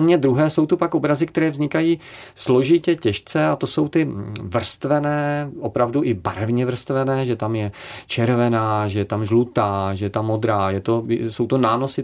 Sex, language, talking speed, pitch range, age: male, Czech, 165 wpm, 105-125 Hz, 40-59